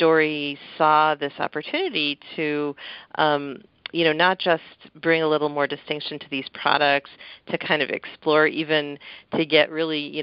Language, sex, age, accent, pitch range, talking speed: English, female, 40-59, American, 140-160 Hz, 160 wpm